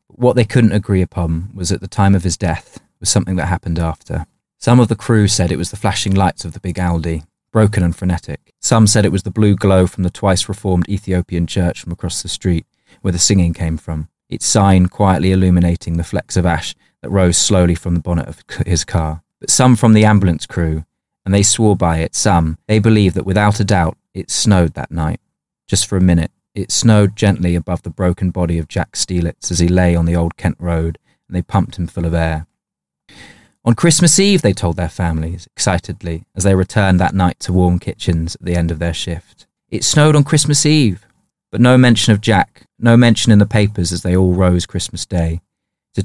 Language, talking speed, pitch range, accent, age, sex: English, 220 wpm, 85-105 Hz, British, 20-39, male